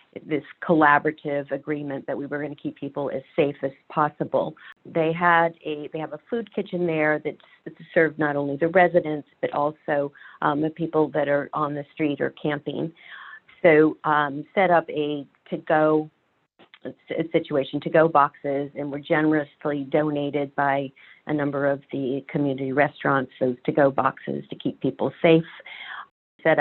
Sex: female